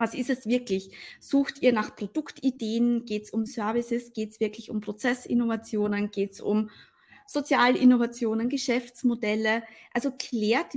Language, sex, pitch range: English, female, 215-265 Hz